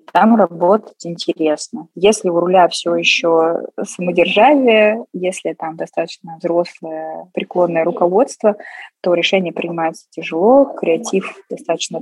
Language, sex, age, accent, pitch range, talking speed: Russian, female, 20-39, native, 165-190 Hz, 105 wpm